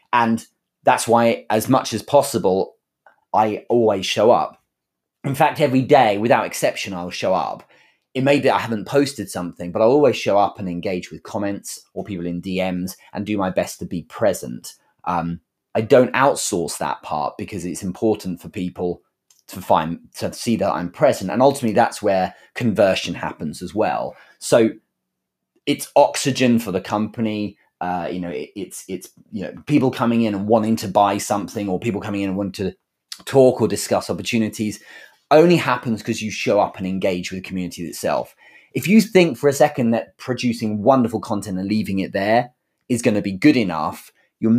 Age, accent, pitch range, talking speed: 30-49, British, 95-125 Hz, 185 wpm